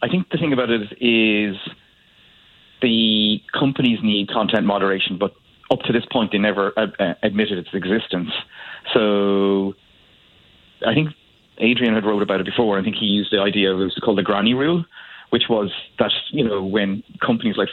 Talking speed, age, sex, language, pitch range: 185 wpm, 30-49, male, English, 95-115 Hz